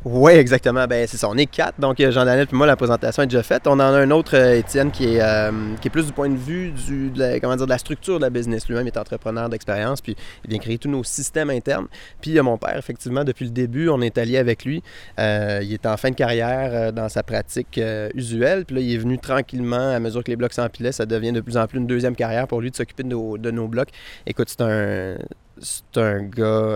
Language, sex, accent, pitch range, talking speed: French, male, Canadian, 115-130 Hz, 265 wpm